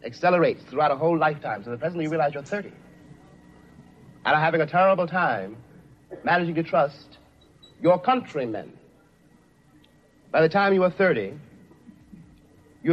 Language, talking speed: English, 140 wpm